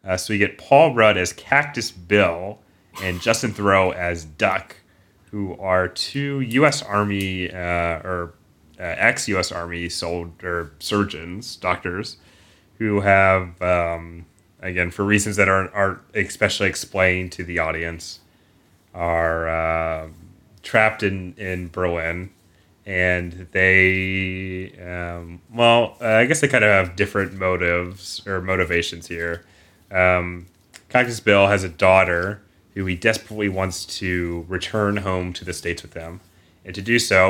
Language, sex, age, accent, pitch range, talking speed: English, male, 30-49, American, 85-100 Hz, 135 wpm